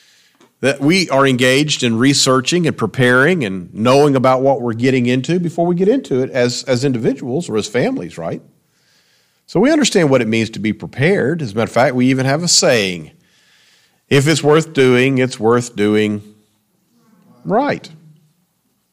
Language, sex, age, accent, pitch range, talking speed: English, male, 40-59, American, 110-145 Hz, 170 wpm